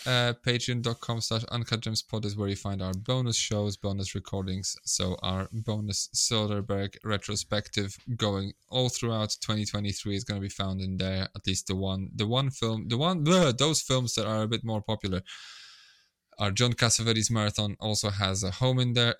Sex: male